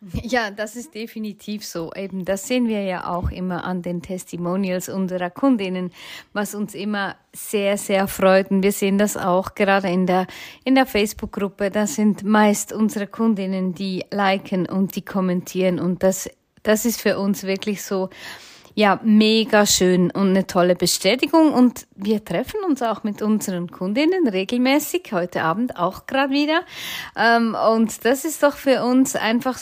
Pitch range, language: 185-230 Hz, German